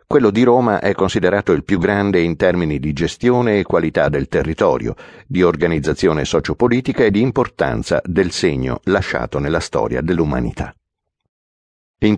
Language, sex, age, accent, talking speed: Italian, male, 60-79, native, 145 wpm